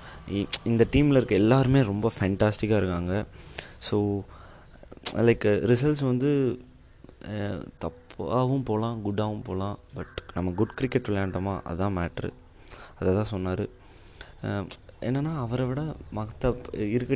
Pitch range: 95-115 Hz